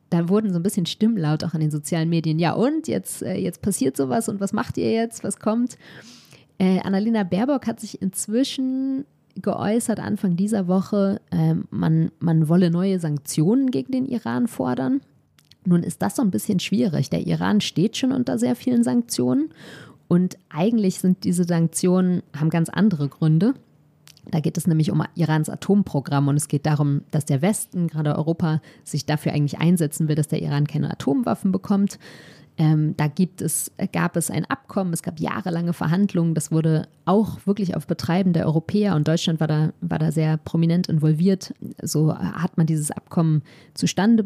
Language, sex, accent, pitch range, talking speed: German, female, German, 160-200 Hz, 170 wpm